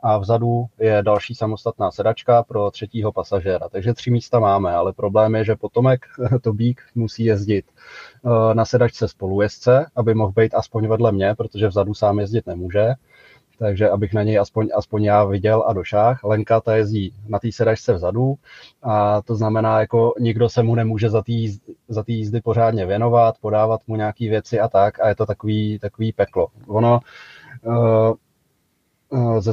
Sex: male